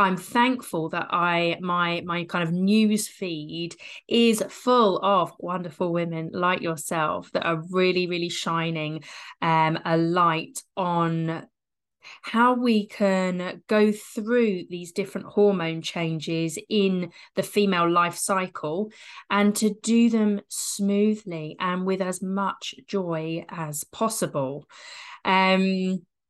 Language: English